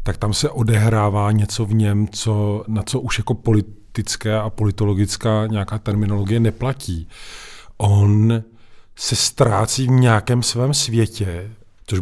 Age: 40-59